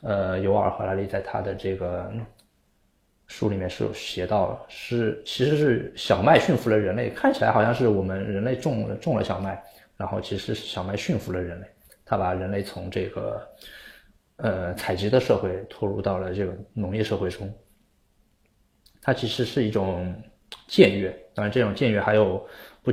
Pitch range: 95-115 Hz